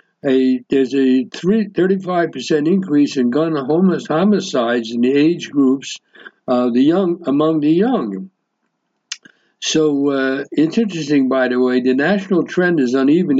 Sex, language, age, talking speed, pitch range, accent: male, English, 60-79, 145 wpm, 125-155 Hz, American